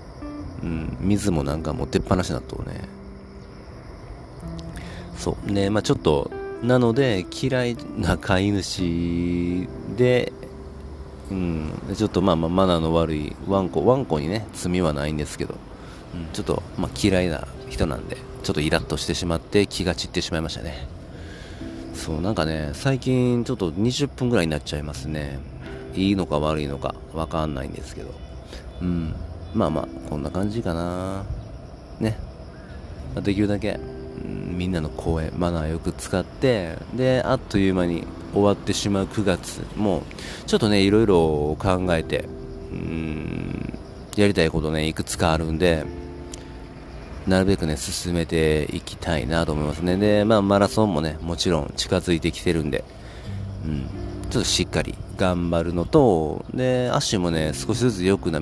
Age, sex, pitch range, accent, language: 40-59, male, 75-100 Hz, native, Japanese